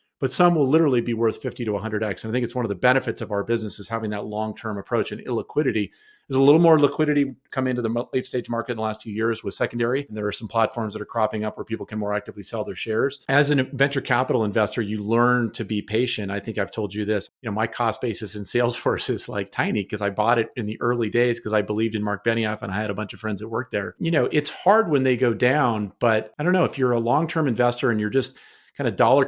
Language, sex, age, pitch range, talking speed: English, male, 40-59, 105-125 Hz, 275 wpm